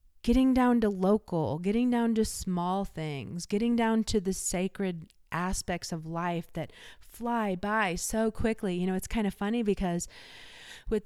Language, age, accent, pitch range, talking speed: English, 30-49, American, 165-195 Hz, 165 wpm